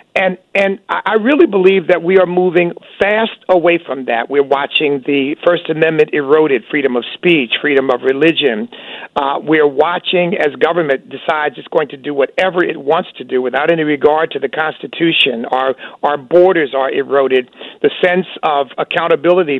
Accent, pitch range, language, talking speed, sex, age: American, 145-185 Hz, English, 170 wpm, male, 50-69